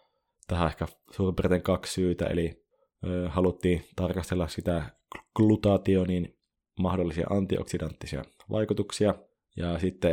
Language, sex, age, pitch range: Finnish, male, 20-39, 85-100 Hz